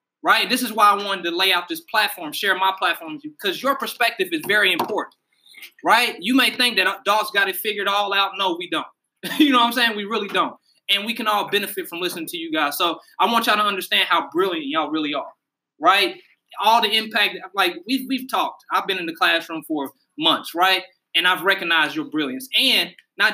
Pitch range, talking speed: 185-280 Hz, 225 wpm